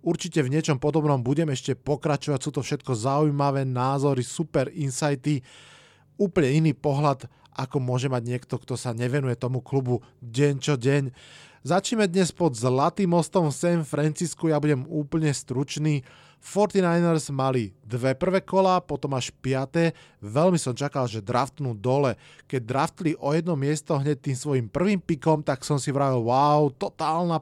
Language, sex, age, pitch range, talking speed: Slovak, male, 20-39, 135-160 Hz, 155 wpm